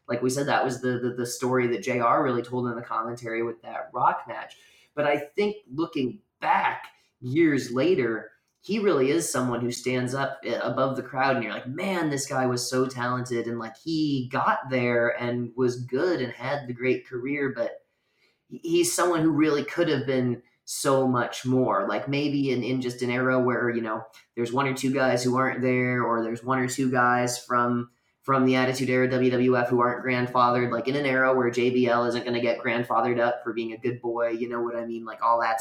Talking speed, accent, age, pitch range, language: 215 wpm, American, 20-39, 120-135 Hz, English